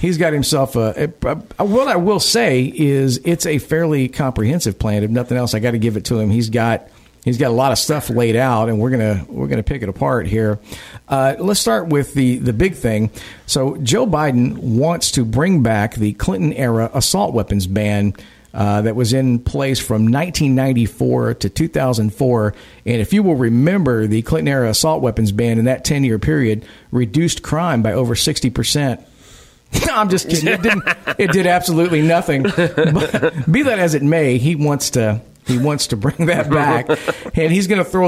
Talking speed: 195 wpm